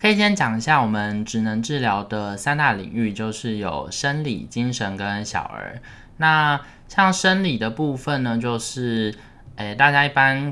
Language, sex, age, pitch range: Chinese, male, 20-39, 105-130 Hz